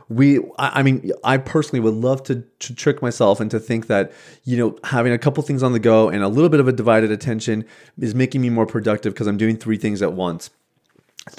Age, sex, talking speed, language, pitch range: 30-49, male, 235 wpm, English, 105-125 Hz